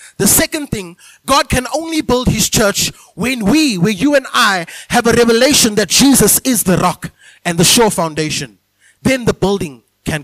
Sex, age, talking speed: male, 20-39, 180 wpm